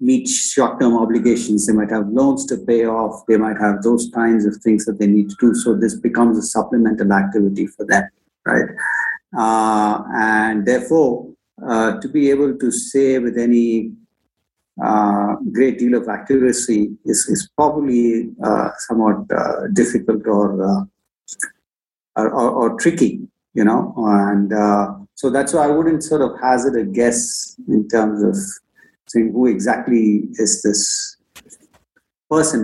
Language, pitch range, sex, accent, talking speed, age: English, 110-130 Hz, male, Indian, 150 wpm, 50-69